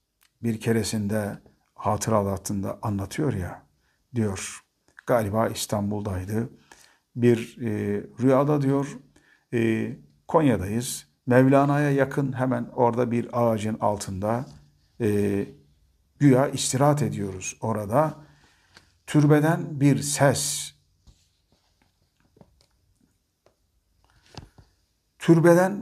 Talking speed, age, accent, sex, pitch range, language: 70 wpm, 50-69, native, male, 100-130 Hz, Turkish